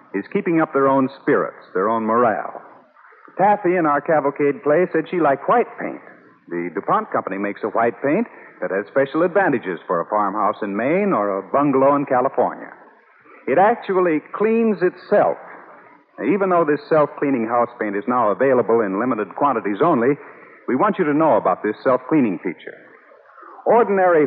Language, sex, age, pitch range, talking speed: English, male, 50-69, 125-180 Hz, 165 wpm